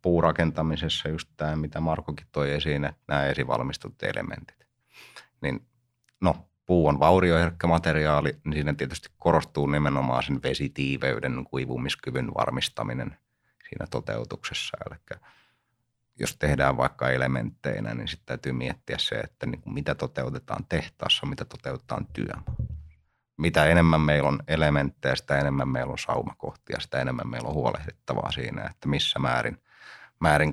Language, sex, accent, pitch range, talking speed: Finnish, male, native, 70-95 Hz, 125 wpm